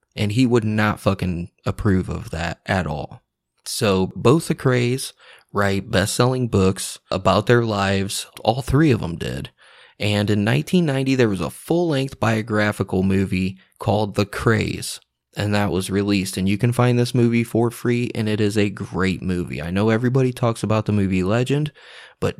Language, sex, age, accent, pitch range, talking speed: English, male, 20-39, American, 100-130 Hz, 175 wpm